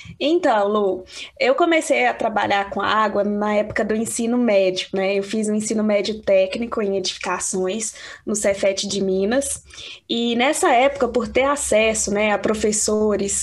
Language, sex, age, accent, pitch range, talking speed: Portuguese, female, 10-29, Brazilian, 205-260 Hz, 160 wpm